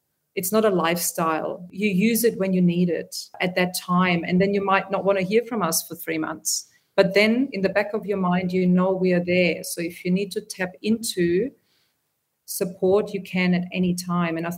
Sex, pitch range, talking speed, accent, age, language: female, 175-195 Hz, 225 wpm, German, 40-59, English